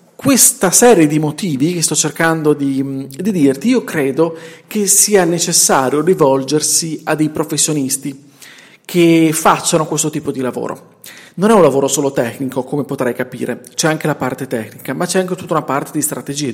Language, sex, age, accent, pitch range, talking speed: Italian, male, 40-59, native, 140-185 Hz, 170 wpm